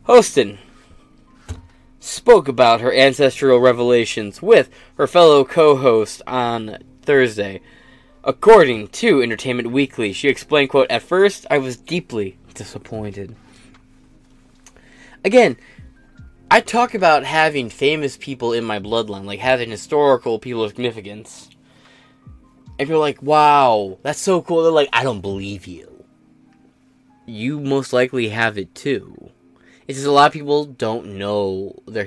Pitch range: 110-145 Hz